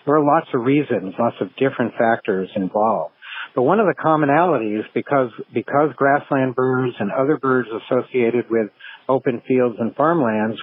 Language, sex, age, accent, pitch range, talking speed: English, male, 60-79, American, 115-135 Hz, 160 wpm